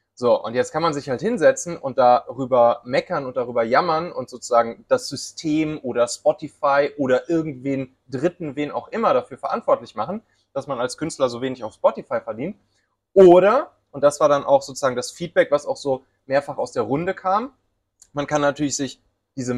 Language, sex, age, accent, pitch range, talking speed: German, male, 30-49, German, 125-175 Hz, 185 wpm